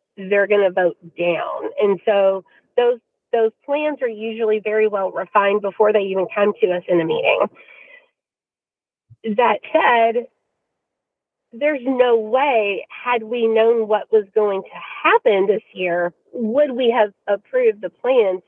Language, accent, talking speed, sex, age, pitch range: English, American, 145 wpm, female, 30-49, 210-295 Hz